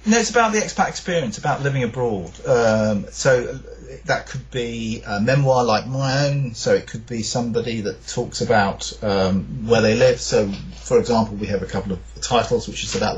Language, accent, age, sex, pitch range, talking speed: English, British, 40-59, male, 100-120 Hz, 195 wpm